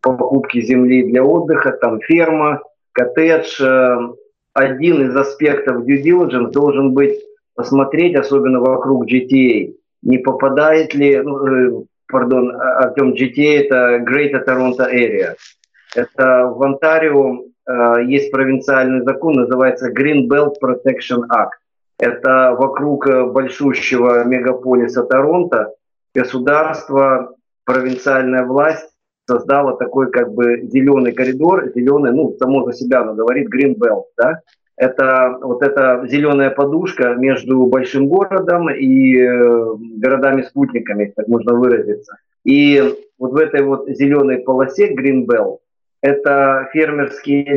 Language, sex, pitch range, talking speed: Russian, male, 125-145 Hz, 110 wpm